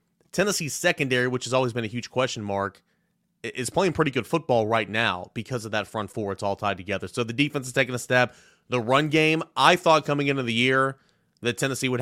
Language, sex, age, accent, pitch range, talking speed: English, male, 30-49, American, 110-140 Hz, 225 wpm